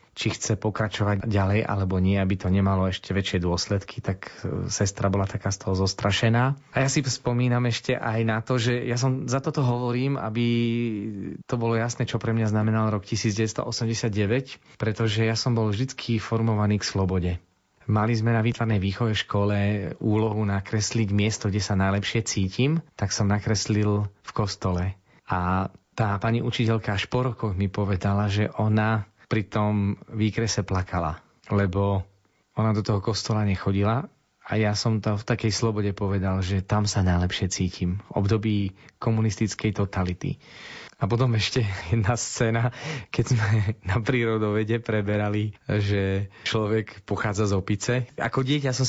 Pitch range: 100-115 Hz